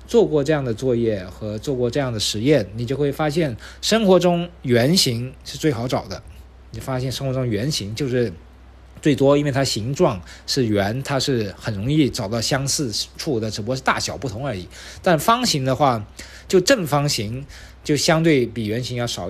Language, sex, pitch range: Chinese, male, 115-155 Hz